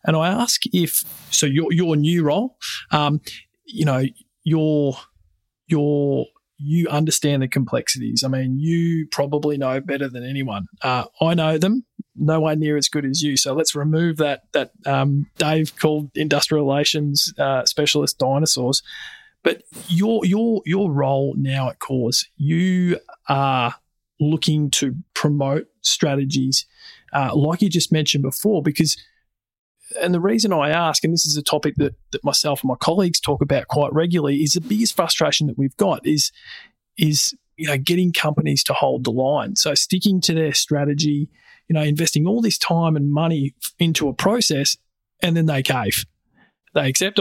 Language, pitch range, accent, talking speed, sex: English, 140-170 Hz, Australian, 165 wpm, male